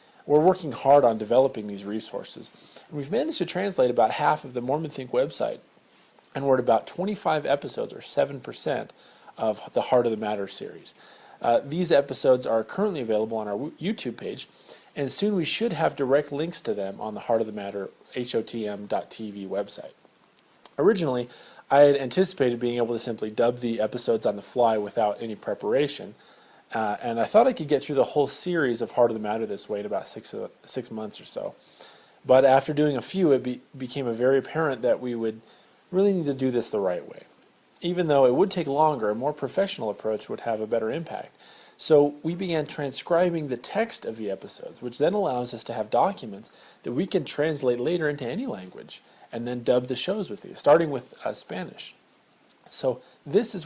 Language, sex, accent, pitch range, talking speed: English, male, American, 115-155 Hz, 195 wpm